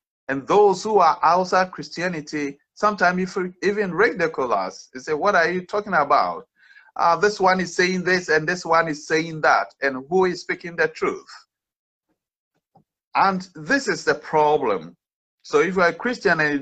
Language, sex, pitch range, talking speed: English, male, 150-200 Hz, 165 wpm